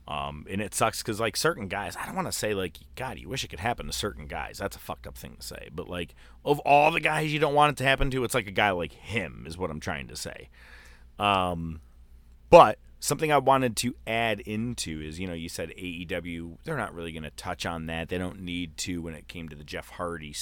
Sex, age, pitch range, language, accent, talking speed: male, 30-49, 80-125 Hz, English, American, 260 wpm